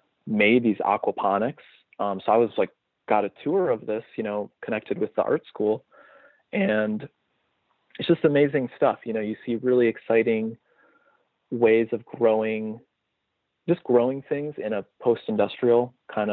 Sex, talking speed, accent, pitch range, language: male, 150 wpm, American, 105-125 Hz, English